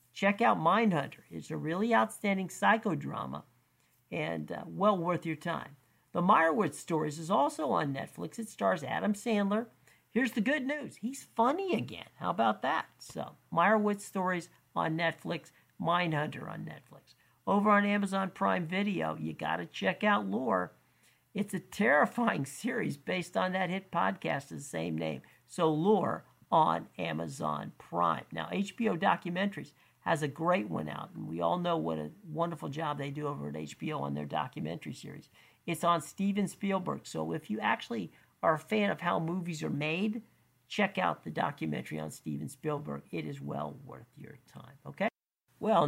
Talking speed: 165 wpm